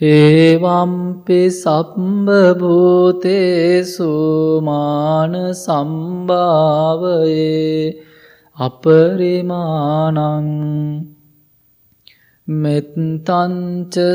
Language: English